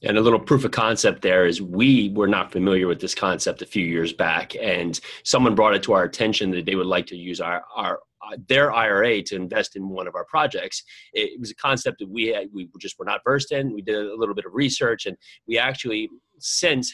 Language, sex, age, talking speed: English, male, 30-49, 240 wpm